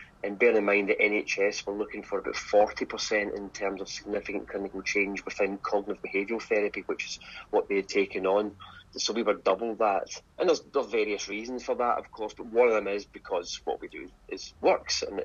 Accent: British